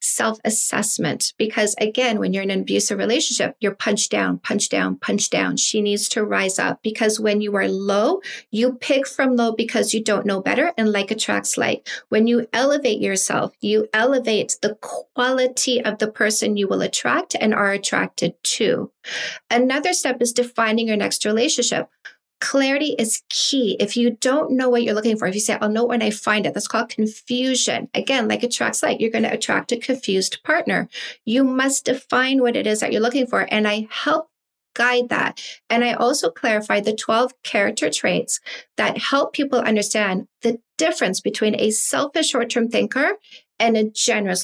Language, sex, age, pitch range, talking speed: English, female, 40-59, 215-255 Hz, 180 wpm